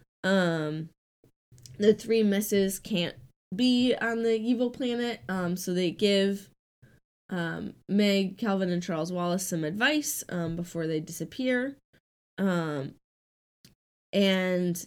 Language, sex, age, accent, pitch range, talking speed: English, female, 10-29, American, 170-225 Hz, 115 wpm